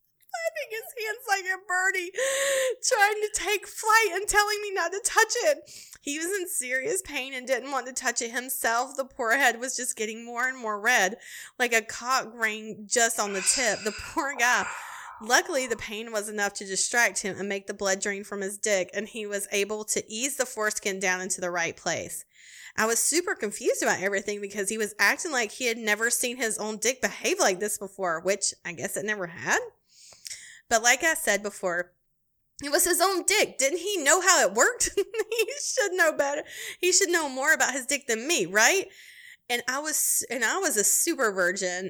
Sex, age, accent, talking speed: female, 20-39, American, 210 wpm